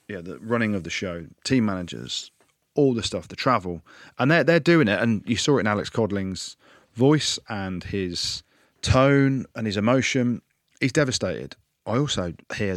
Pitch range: 95-115 Hz